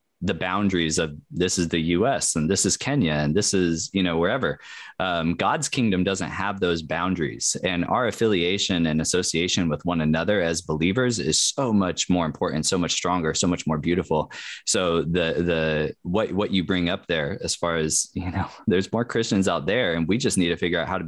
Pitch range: 85-100 Hz